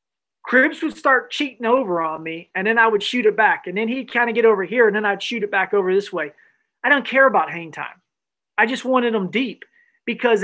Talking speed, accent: 245 wpm, American